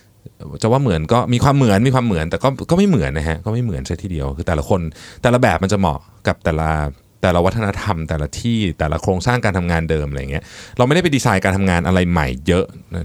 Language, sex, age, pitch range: Thai, male, 20-39, 85-120 Hz